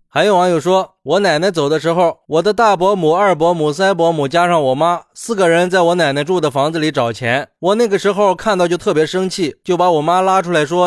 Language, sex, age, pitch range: Chinese, male, 20-39, 150-195 Hz